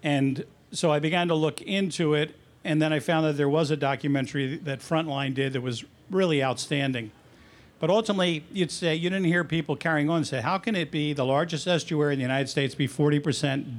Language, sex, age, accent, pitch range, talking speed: English, male, 50-69, American, 140-175 Hz, 215 wpm